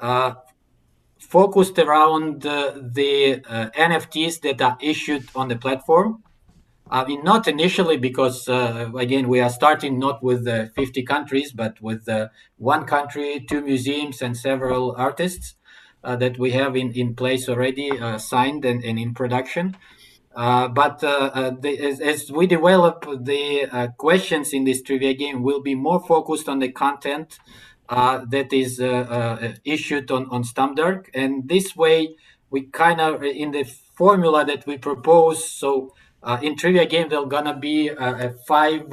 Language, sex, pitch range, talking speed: English, male, 130-155 Hz, 165 wpm